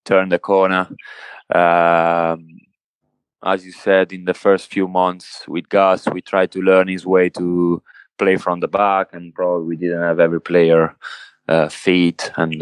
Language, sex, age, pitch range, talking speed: English, male, 20-39, 85-95 Hz, 165 wpm